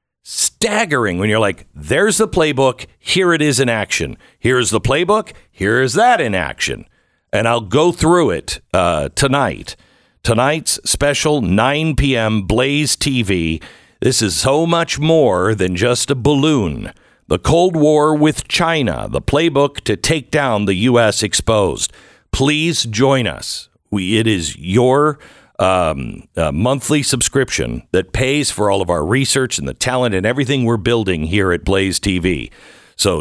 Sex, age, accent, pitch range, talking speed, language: male, 60-79, American, 95-140 Hz, 150 wpm, English